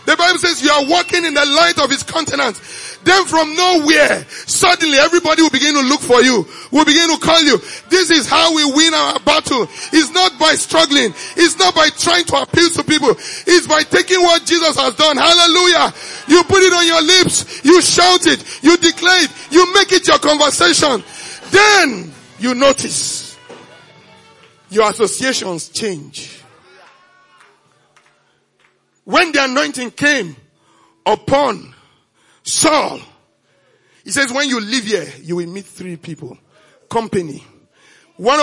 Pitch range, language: 240-335 Hz, English